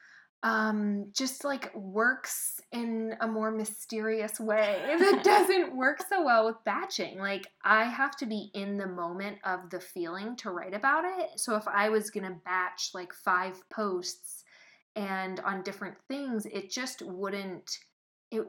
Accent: American